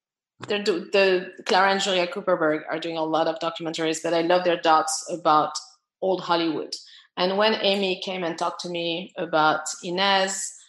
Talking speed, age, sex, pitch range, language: 170 wpm, 30-49, female, 175-210 Hz, English